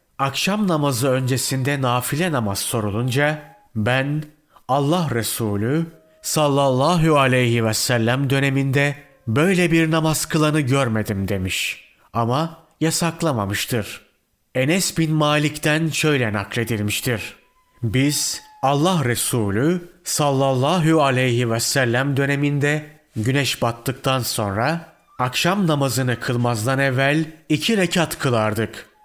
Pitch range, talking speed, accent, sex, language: 125-155 Hz, 95 wpm, native, male, Turkish